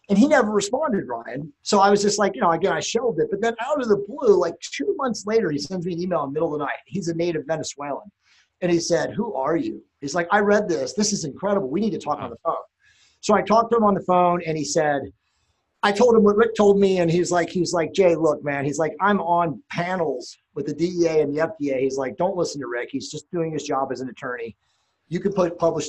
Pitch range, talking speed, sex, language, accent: 150-195 Hz, 270 wpm, male, English, American